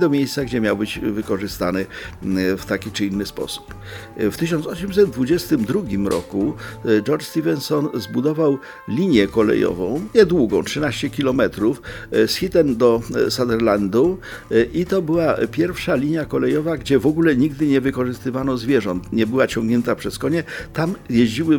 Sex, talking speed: male, 130 wpm